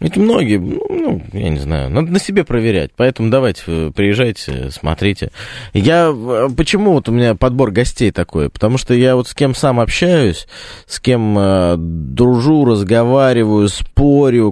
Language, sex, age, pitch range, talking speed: Russian, male, 20-39, 95-125 Hz, 145 wpm